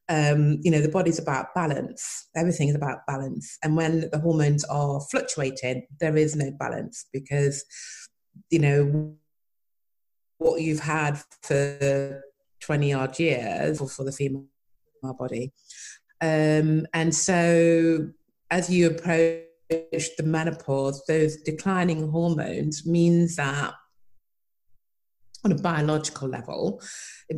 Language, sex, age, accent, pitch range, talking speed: English, female, 30-49, British, 140-165 Hz, 120 wpm